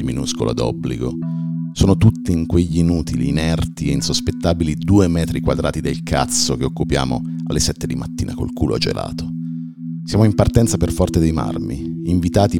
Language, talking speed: Italian, 150 wpm